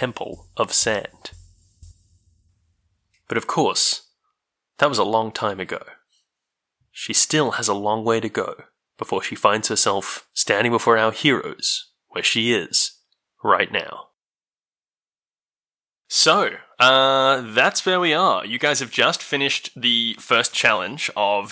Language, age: English, 20-39